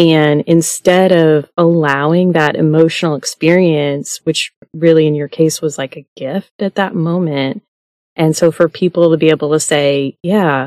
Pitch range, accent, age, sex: 145-175 Hz, American, 30-49, female